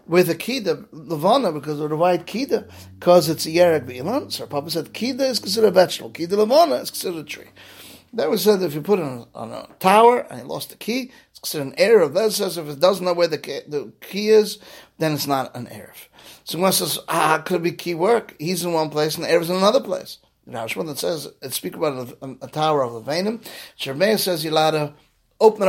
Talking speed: 245 wpm